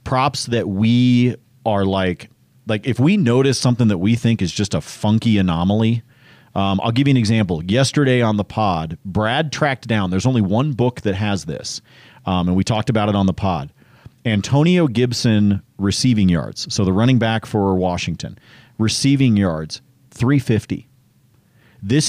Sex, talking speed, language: male, 165 wpm, English